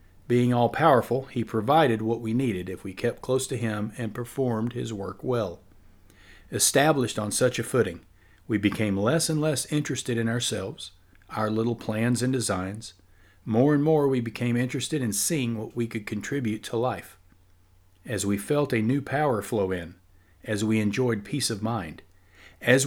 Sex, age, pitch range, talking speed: male, 50-69, 95-120 Hz, 170 wpm